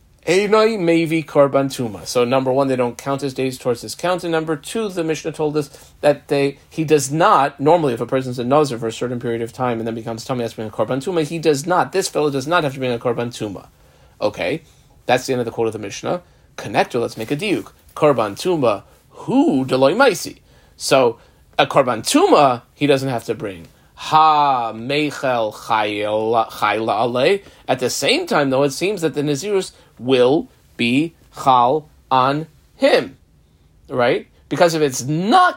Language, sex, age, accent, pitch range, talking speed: English, male, 30-49, American, 125-165 Hz, 180 wpm